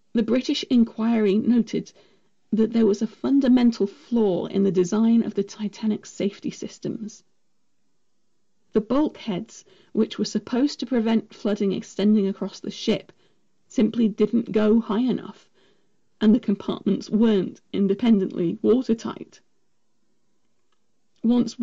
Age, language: 40-59, English